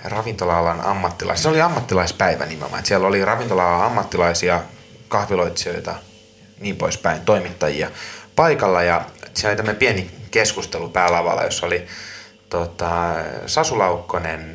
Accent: native